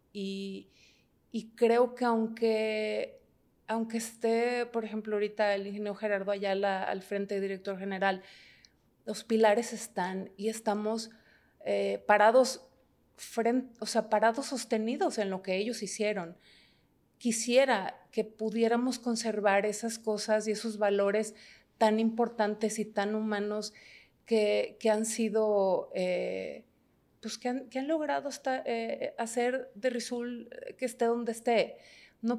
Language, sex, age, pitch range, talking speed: Spanish, female, 30-49, 205-245 Hz, 130 wpm